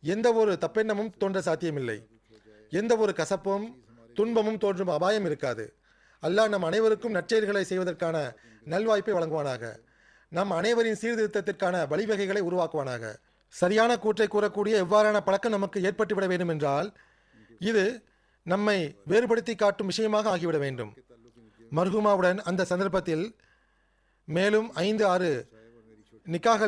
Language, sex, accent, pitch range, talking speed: Tamil, male, native, 155-210 Hz, 100 wpm